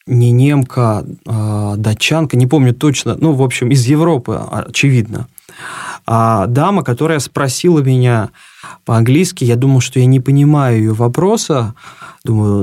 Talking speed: 125 wpm